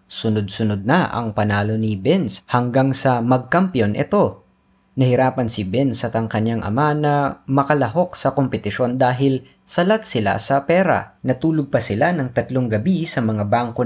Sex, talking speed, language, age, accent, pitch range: female, 145 wpm, Filipino, 20-39, native, 110-145 Hz